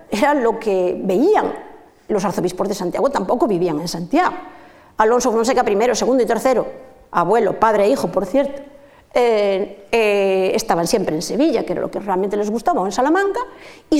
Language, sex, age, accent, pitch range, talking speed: Spanish, female, 50-69, Spanish, 220-300 Hz, 175 wpm